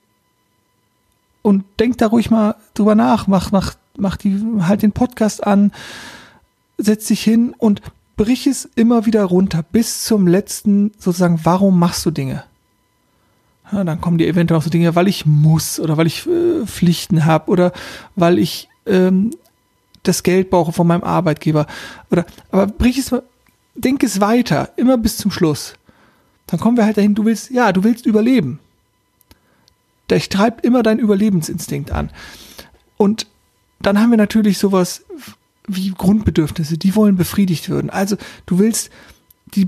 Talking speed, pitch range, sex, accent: 155 wpm, 170-220 Hz, male, German